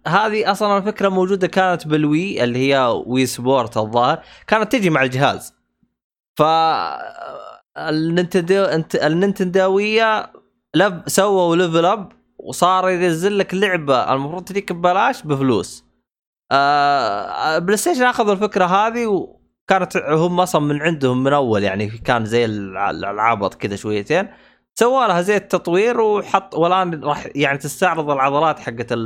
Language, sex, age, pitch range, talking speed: Arabic, male, 20-39, 125-185 Hz, 120 wpm